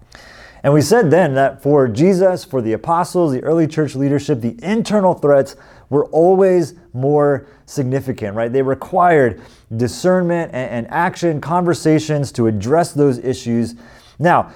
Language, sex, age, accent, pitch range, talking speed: English, male, 30-49, American, 105-145 Hz, 135 wpm